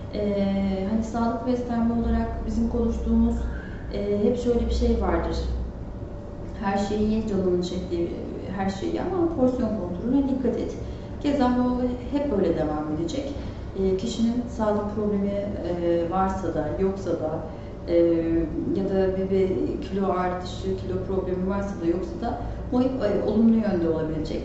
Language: Turkish